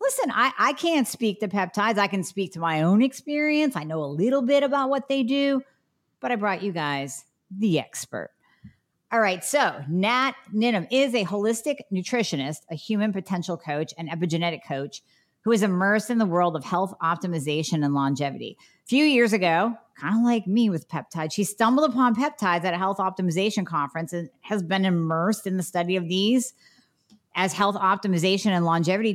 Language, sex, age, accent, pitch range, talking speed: English, female, 40-59, American, 165-220 Hz, 185 wpm